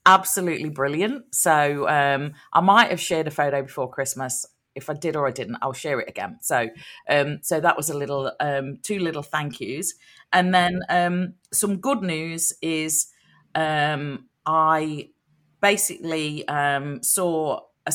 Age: 40-59